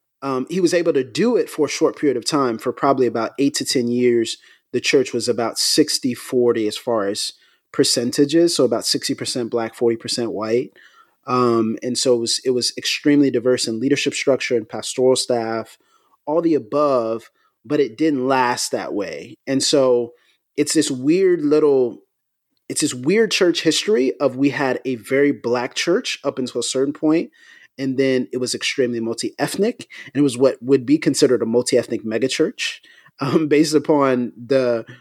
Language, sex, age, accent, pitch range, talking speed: English, male, 30-49, American, 125-155 Hz, 175 wpm